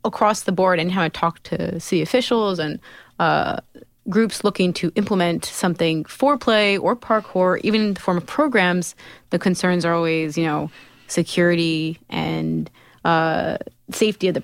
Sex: female